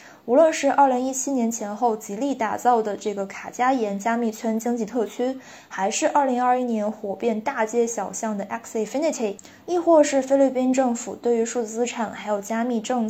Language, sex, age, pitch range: Chinese, female, 20-39, 220-270 Hz